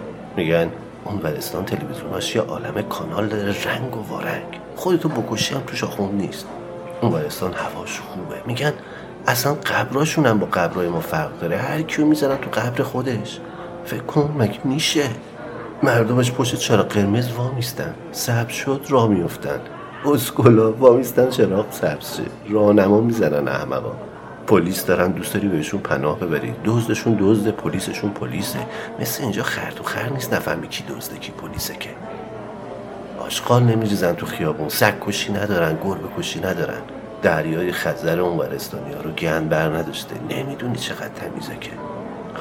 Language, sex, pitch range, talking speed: Persian, male, 105-135 Hz, 135 wpm